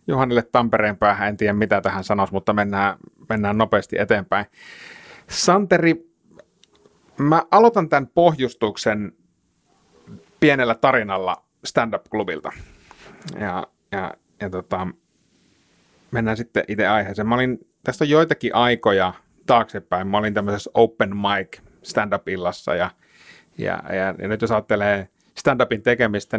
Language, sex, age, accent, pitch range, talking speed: Finnish, male, 30-49, native, 100-120 Hz, 115 wpm